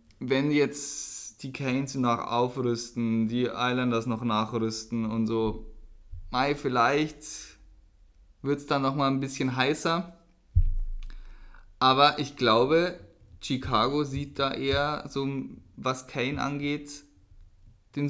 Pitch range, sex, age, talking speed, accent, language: 110-140 Hz, male, 20-39, 110 wpm, German, German